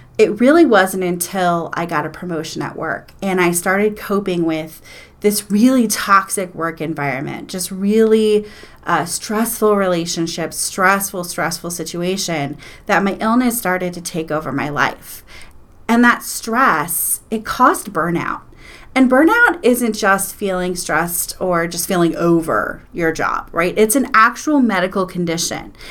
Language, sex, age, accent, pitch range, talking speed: English, female, 30-49, American, 170-225 Hz, 140 wpm